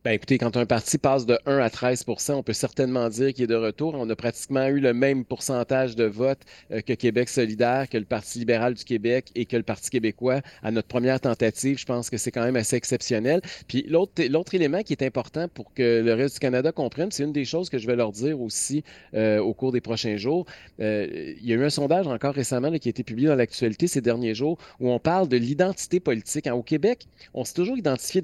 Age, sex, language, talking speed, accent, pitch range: 30-49, male, French, 245 wpm, Canadian, 120-150 Hz